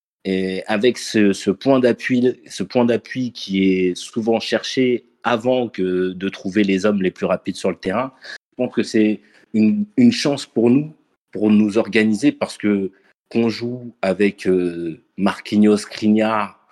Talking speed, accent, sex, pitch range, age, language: 160 wpm, French, male, 95-115 Hz, 30-49, French